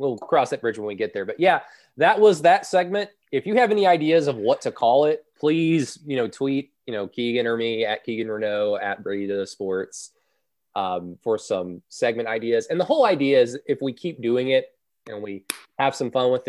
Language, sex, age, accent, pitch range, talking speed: English, male, 20-39, American, 110-140 Hz, 220 wpm